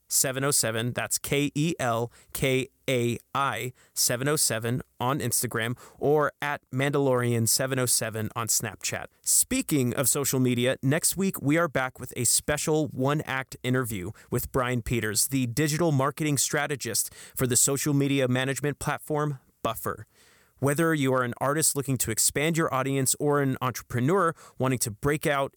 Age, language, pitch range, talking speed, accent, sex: 30-49, English, 120-145 Hz, 130 wpm, American, male